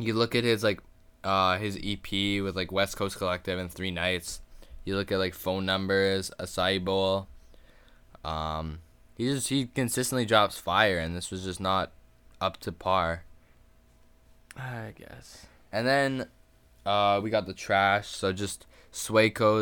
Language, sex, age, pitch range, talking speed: English, male, 10-29, 90-105 Hz, 155 wpm